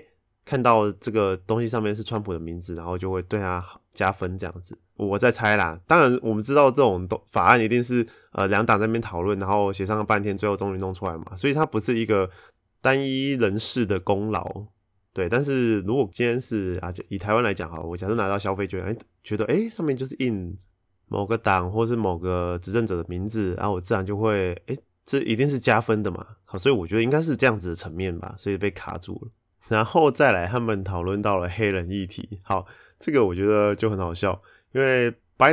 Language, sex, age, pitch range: Chinese, male, 20-39, 95-115 Hz